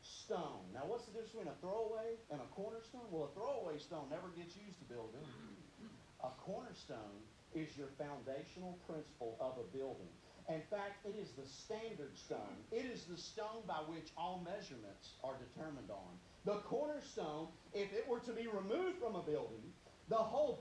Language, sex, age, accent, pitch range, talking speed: English, male, 40-59, American, 135-205 Hz, 175 wpm